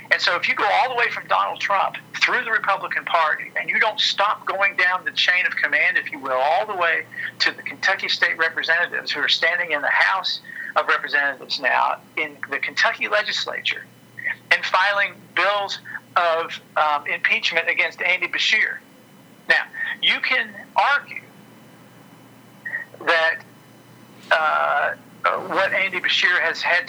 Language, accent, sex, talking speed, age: English, American, male, 155 wpm, 50-69